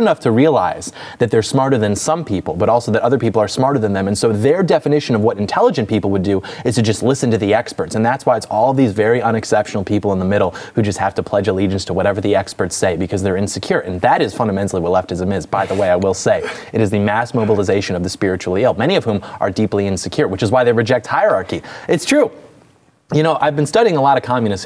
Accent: American